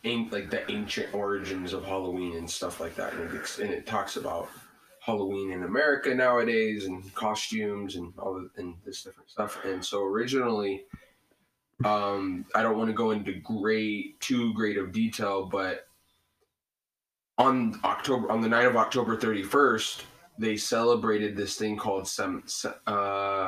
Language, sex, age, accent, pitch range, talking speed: English, male, 20-39, American, 100-115 Hz, 155 wpm